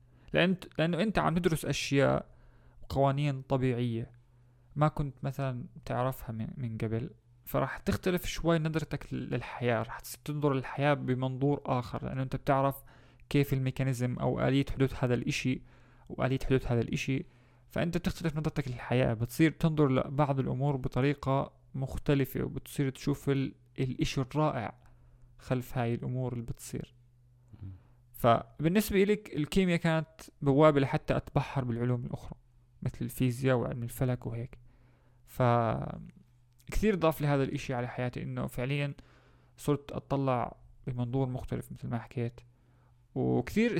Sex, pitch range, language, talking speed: male, 125-145 Hz, Arabic, 120 wpm